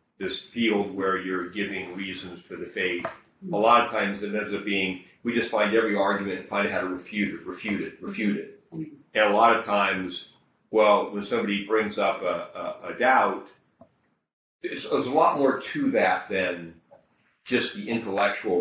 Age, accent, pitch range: 40-59, American, 90-105 Hz